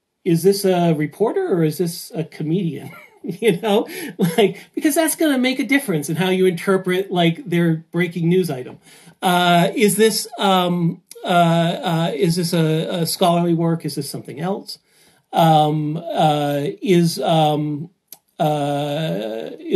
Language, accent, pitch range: English, American, 155-200 Hz